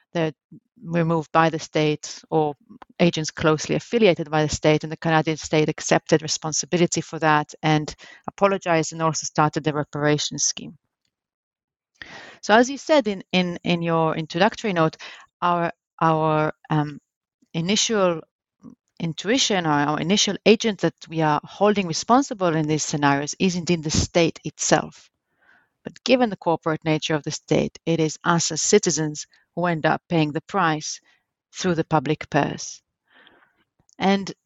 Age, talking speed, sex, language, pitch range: 30-49, 145 wpm, female, English, 155-195 Hz